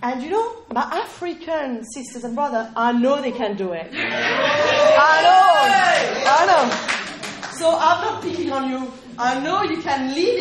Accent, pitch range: French, 245-335 Hz